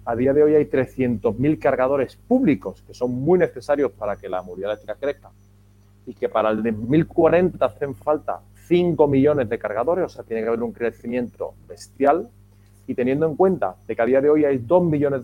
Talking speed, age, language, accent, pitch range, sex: 195 wpm, 30-49, Spanish, Spanish, 100-135 Hz, male